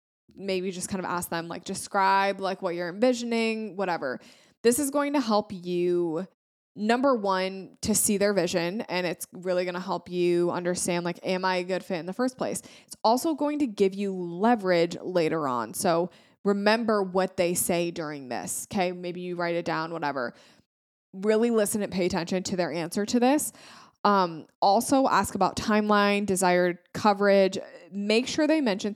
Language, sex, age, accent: English, female, 20-39, American